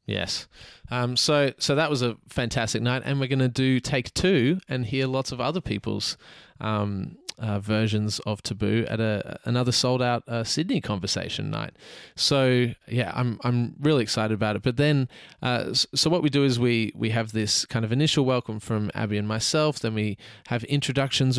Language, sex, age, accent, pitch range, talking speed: English, male, 20-39, Australian, 110-135 Hz, 190 wpm